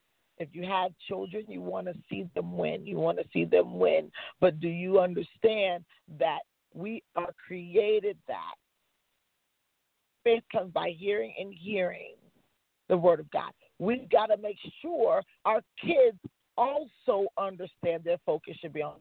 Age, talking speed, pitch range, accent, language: 40-59, 155 wpm, 180-275 Hz, American, English